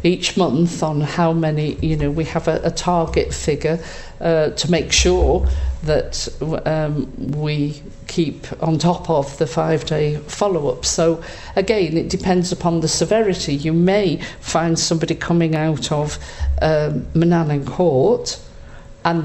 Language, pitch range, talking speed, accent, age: English, 145-170 Hz, 140 wpm, British, 50-69